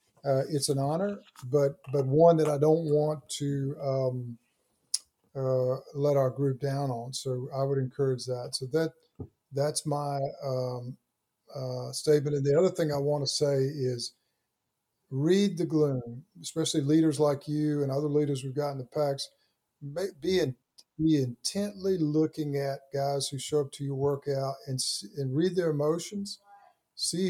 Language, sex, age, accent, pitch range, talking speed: English, male, 50-69, American, 130-155 Hz, 165 wpm